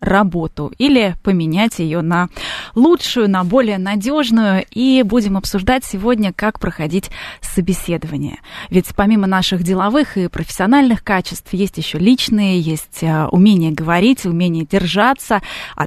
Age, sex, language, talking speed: 20-39, female, Russian, 120 wpm